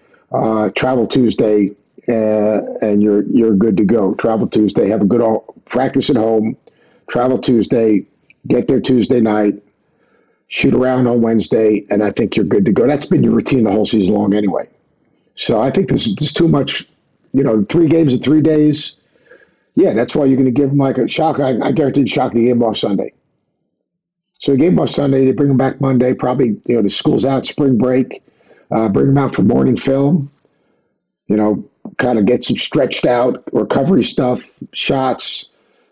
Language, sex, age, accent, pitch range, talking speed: English, male, 50-69, American, 115-145 Hz, 195 wpm